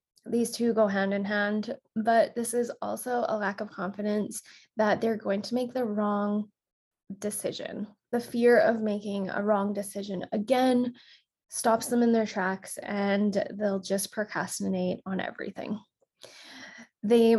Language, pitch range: English, 205-235 Hz